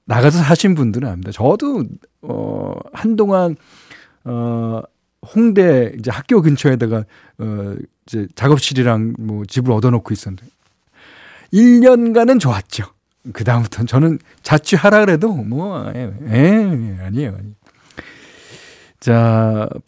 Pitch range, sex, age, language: 115-160 Hz, male, 40-59, Korean